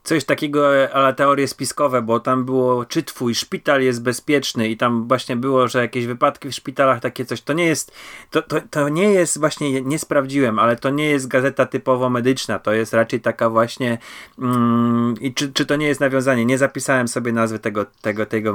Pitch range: 115-135 Hz